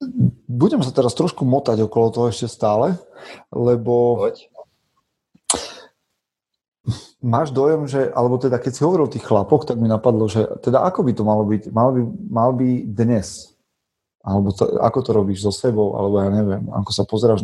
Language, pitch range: Slovak, 105-120 Hz